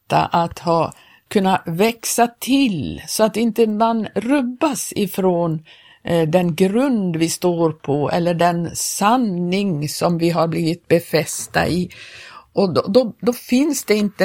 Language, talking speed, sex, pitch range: Swedish, 135 wpm, female, 175-225 Hz